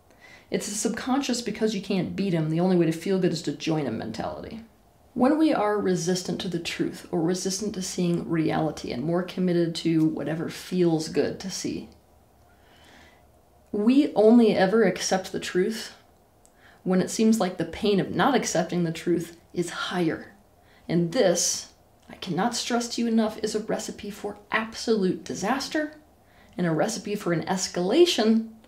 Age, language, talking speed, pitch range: 30-49, English, 165 wpm, 170-225 Hz